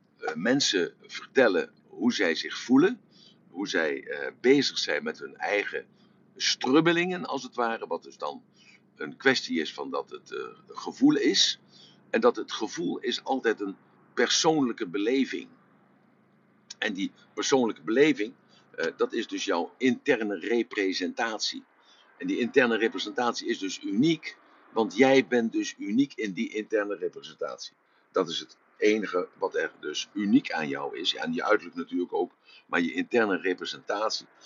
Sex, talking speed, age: male, 155 wpm, 60-79